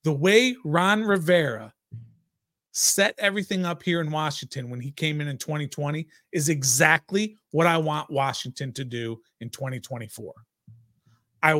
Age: 40-59